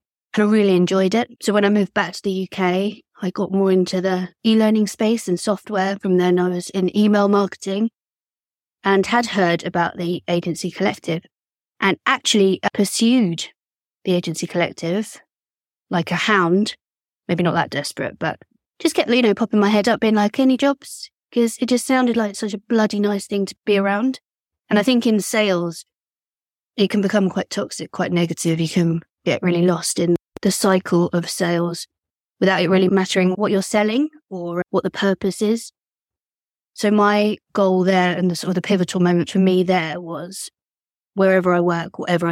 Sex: female